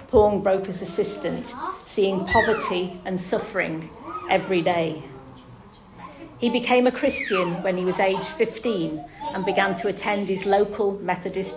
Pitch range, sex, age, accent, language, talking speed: 180-215 Hz, female, 40-59, British, English, 130 wpm